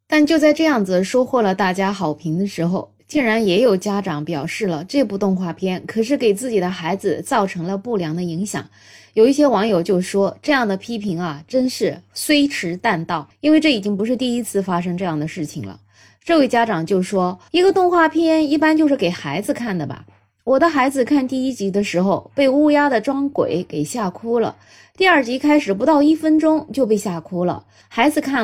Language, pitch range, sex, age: Chinese, 180-270 Hz, female, 20-39